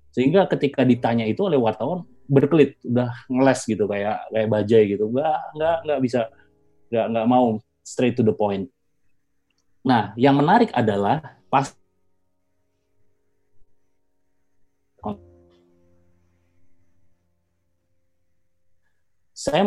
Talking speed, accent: 95 wpm, native